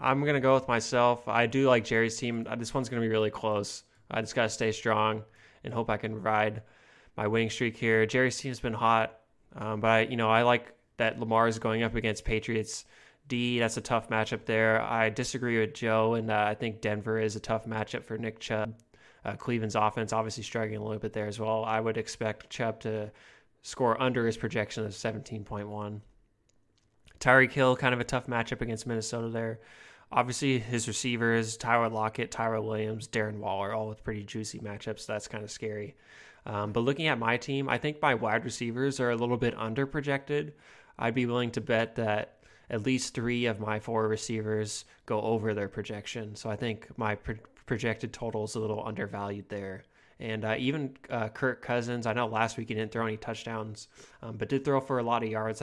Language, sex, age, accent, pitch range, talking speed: English, male, 20-39, American, 110-120 Hz, 205 wpm